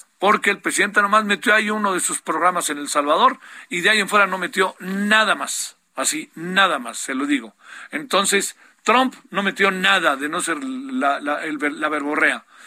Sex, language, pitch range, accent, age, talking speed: male, Spanish, 165-215 Hz, Mexican, 50-69, 195 wpm